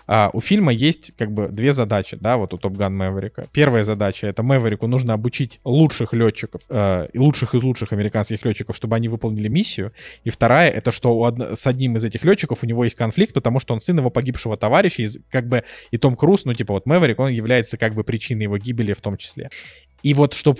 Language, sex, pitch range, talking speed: Russian, male, 110-135 Hz, 225 wpm